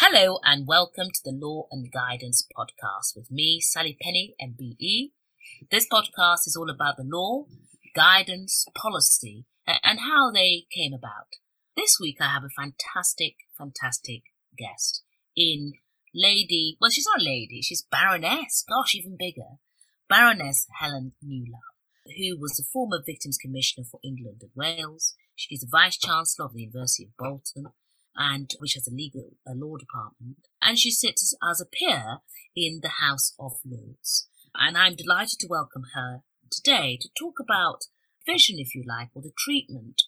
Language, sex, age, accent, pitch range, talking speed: English, female, 30-49, British, 130-185 Hz, 160 wpm